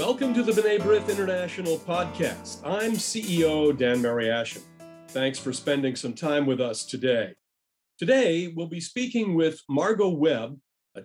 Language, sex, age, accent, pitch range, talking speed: English, male, 40-59, American, 135-185 Hz, 150 wpm